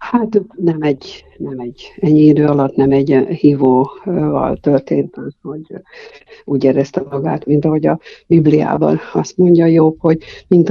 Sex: female